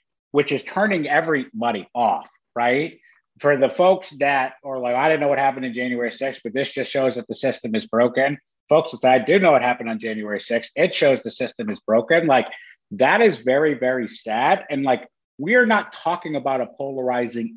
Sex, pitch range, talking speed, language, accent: male, 125-160 Hz, 210 wpm, English, American